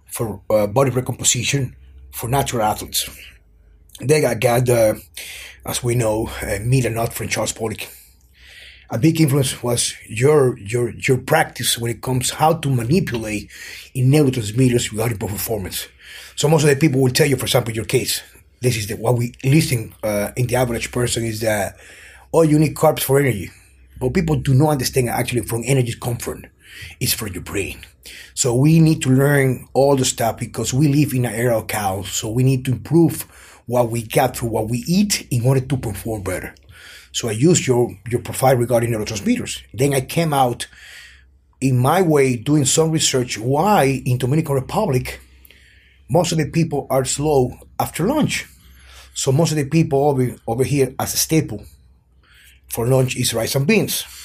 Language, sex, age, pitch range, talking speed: German, male, 30-49, 110-135 Hz, 180 wpm